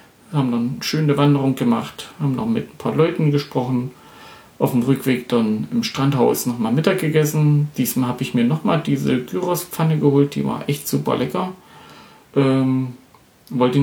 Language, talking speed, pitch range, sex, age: German, 160 wpm, 125-150 Hz, male, 40-59